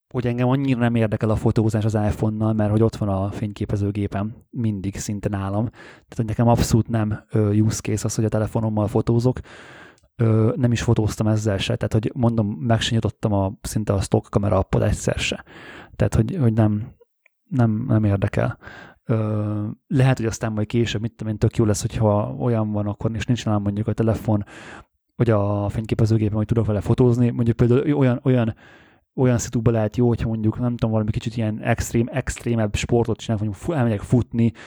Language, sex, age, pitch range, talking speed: Hungarian, male, 20-39, 105-120 Hz, 185 wpm